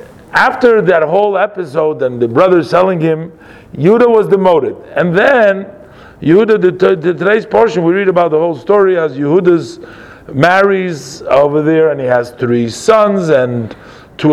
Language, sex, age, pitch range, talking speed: English, male, 50-69, 145-195 Hz, 155 wpm